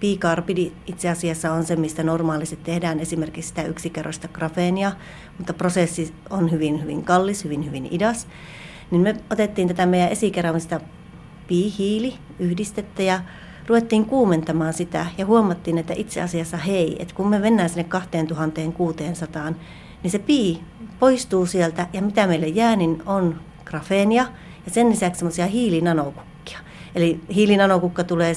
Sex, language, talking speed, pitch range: female, Finnish, 135 wpm, 165-195 Hz